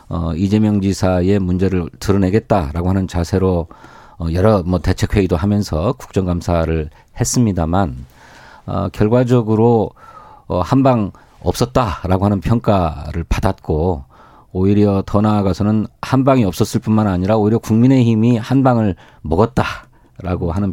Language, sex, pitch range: Korean, male, 90-115 Hz